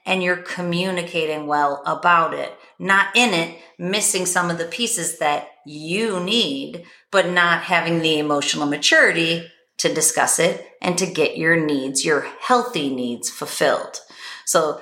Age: 40-59